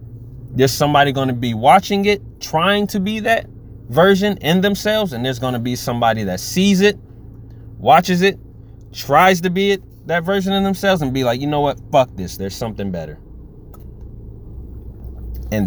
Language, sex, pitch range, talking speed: English, male, 105-140 Hz, 170 wpm